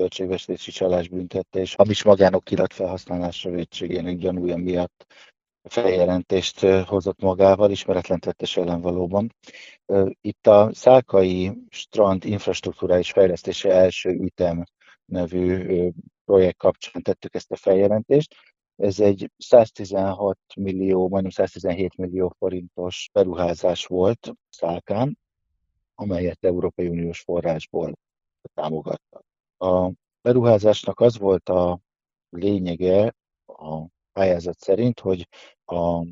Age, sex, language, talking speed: 50-69, male, Hungarian, 95 wpm